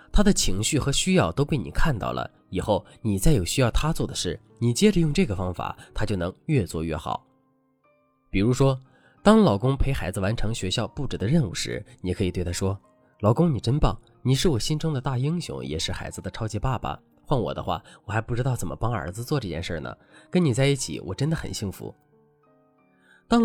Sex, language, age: male, Chinese, 20-39